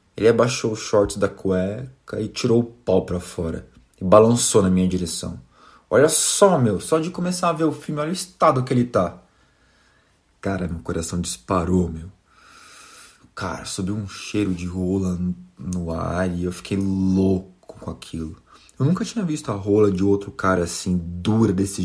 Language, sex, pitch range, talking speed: Portuguese, male, 90-115 Hz, 175 wpm